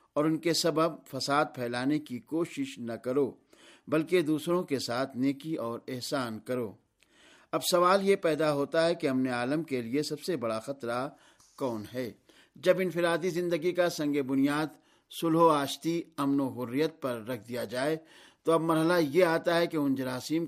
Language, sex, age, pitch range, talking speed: Urdu, male, 50-69, 135-165 Hz, 175 wpm